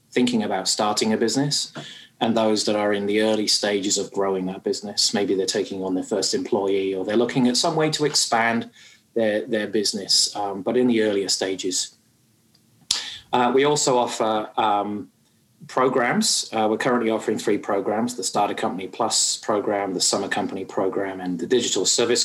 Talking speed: 180 wpm